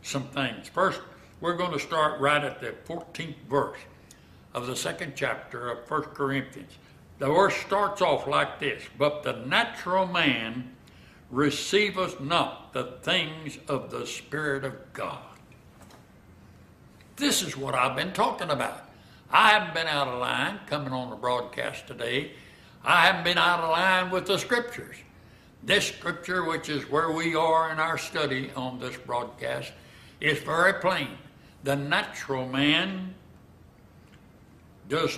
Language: English